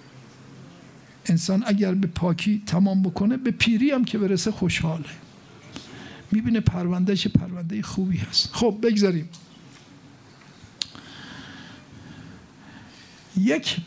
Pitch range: 170-235 Hz